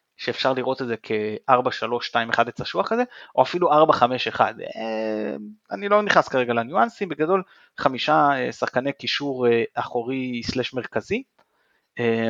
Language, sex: Hebrew, male